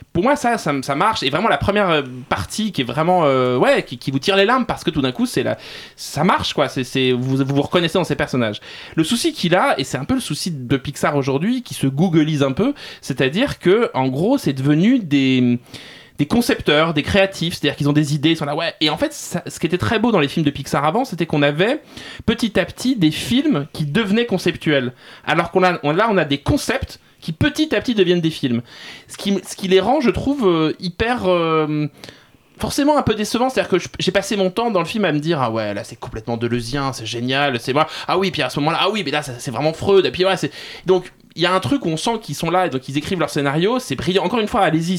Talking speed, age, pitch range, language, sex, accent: 265 wpm, 20-39, 140-190 Hz, French, male, French